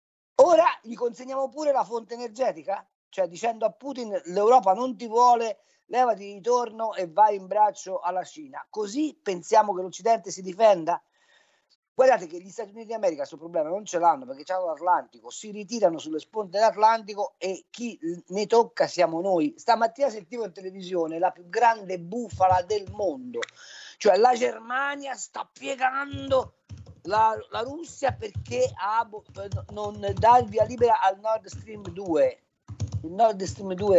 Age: 40-59